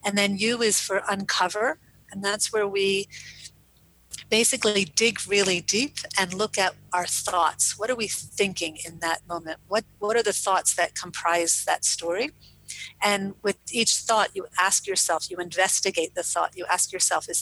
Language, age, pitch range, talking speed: English, 40-59, 180-220 Hz, 170 wpm